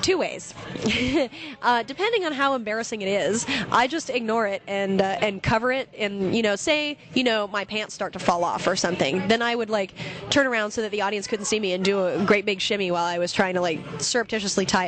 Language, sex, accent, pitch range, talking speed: English, female, American, 190-235 Hz, 240 wpm